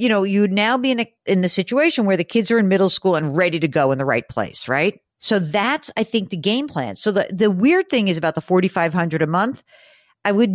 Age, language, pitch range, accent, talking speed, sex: 50-69, English, 150-215 Hz, American, 260 wpm, female